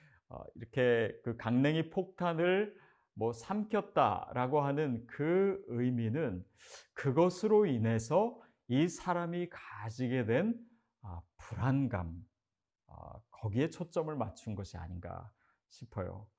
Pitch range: 110-155 Hz